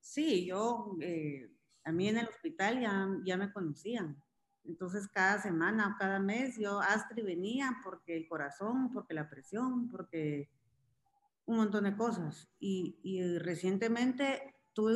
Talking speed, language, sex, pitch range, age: 145 wpm, Spanish, female, 180-245 Hz, 40-59